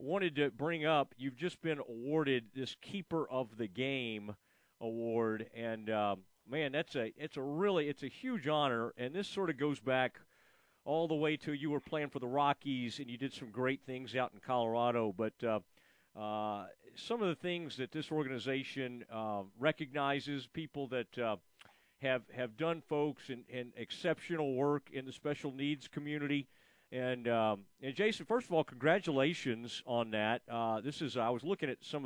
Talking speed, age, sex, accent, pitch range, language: 180 wpm, 40-59, male, American, 120-150 Hz, English